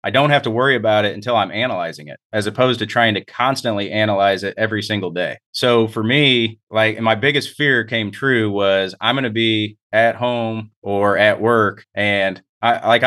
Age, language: 30-49, English